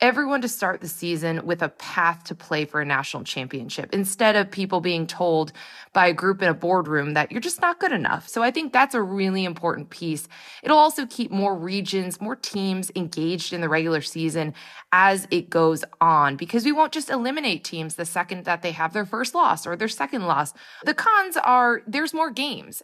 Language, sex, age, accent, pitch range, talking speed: English, female, 20-39, American, 170-245 Hz, 210 wpm